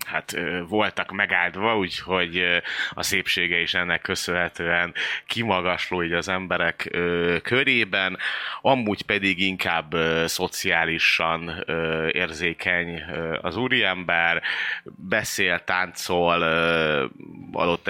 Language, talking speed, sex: Hungarian, 75 wpm, male